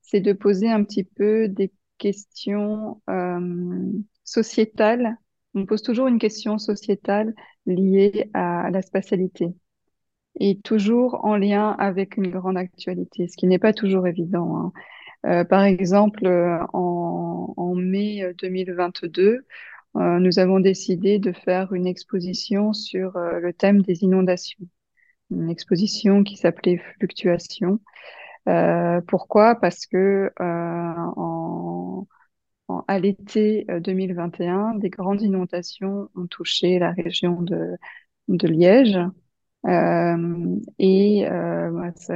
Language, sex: French, female